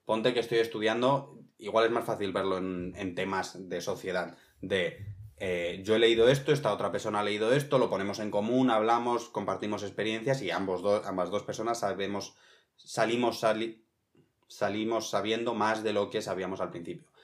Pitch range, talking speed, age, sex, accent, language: 100-115 Hz, 180 wpm, 20-39, male, Spanish, Spanish